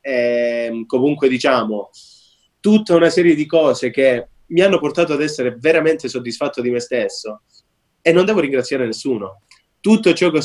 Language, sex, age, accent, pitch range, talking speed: Italian, male, 20-39, native, 125-160 Hz, 160 wpm